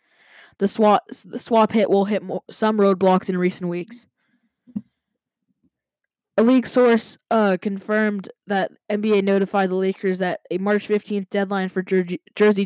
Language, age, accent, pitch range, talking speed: English, 10-29, American, 185-205 Hz, 145 wpm